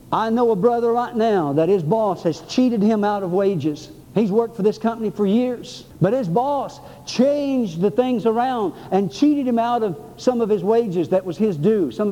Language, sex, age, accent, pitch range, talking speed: English, male, 60-79, American, 210-270 Hz, 215 wpm